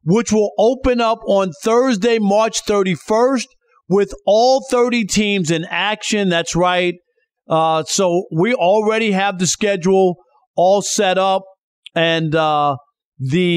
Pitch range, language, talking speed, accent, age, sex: 170-215 Hz, English, 130 wpm, American, 40-59, male